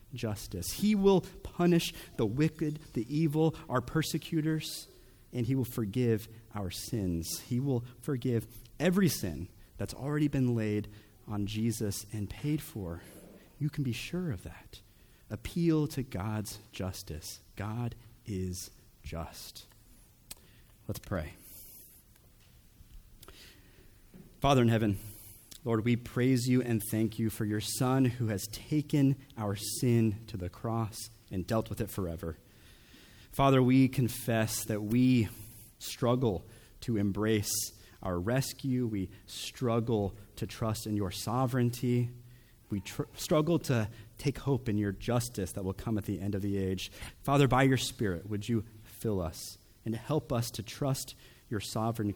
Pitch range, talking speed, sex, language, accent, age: 100-125 Hz, 140 wpm, male, English, American, 30-49